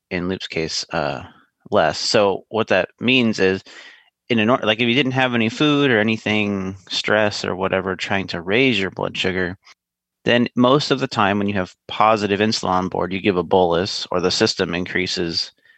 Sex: male